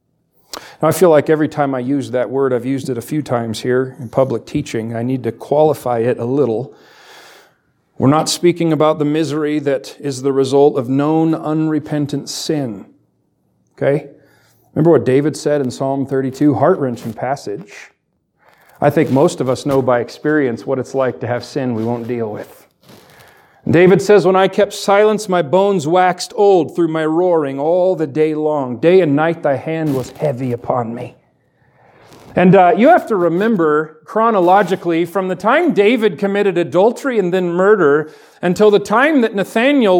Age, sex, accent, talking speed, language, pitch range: 40-59, male, American, 175 wpm, English, 140-195 Hz